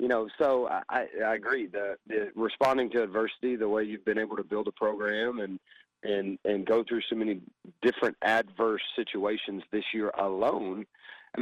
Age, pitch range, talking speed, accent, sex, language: 40-59, 105-120 Hz, 175 wpm, American, male, English